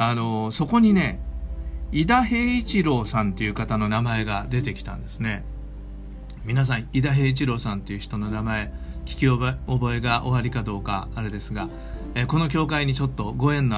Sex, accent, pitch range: male, native, 100-150 Hz